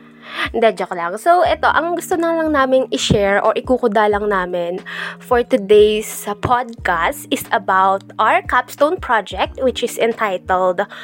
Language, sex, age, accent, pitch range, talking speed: Filipino, female, 20-39, native, 205-285 Hz, 130 wpm